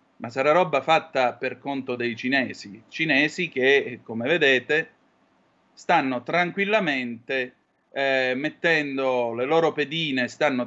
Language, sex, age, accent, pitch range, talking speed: Italian, male, 30-49, native, 125-150 Hz, 110 wpm